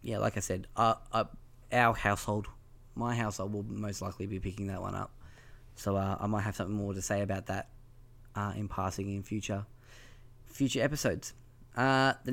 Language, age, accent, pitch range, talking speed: English, 10-29, Australian, 105-120 Hz, 185 wpm